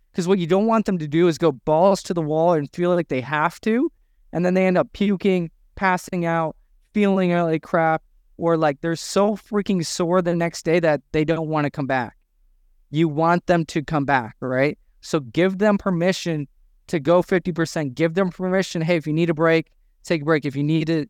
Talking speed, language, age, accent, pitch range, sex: 220 wpm, English, 20-39, American, 155-185 Hz, male